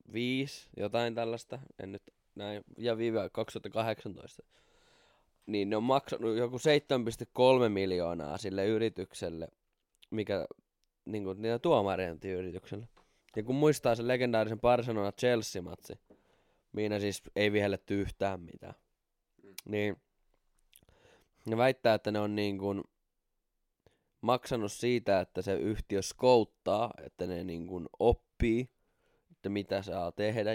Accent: native